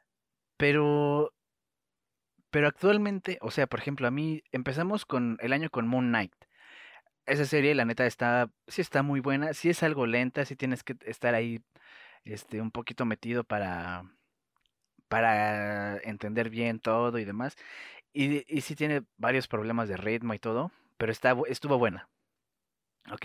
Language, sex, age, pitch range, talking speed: Spanish, male, 30-49, 115-145 Hz, 155 wpm